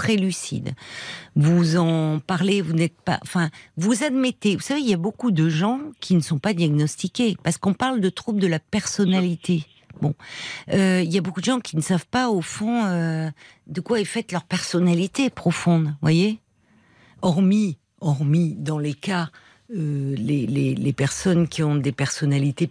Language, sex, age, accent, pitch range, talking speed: French, female, 50-69, French, 150-190 Hz, 180 wpm